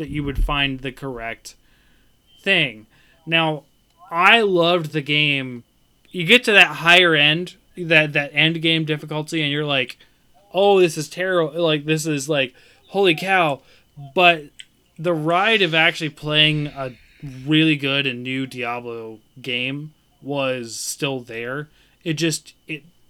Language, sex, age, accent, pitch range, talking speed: English, male, 20-39, American, 135-175 Hz, 145 wpm